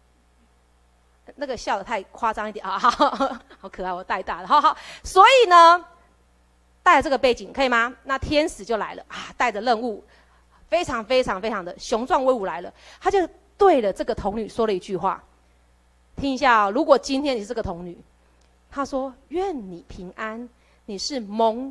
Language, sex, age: Chinese, female, 30-49